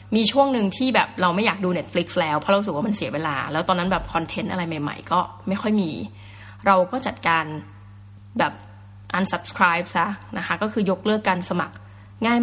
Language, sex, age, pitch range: Thai, female, 20-39, 155-210 Hz